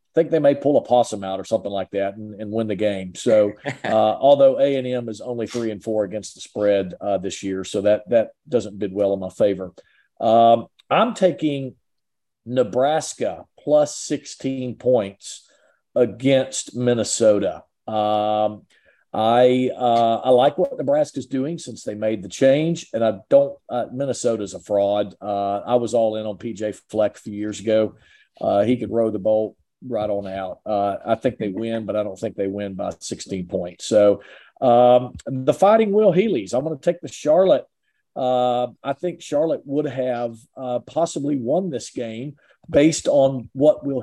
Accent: American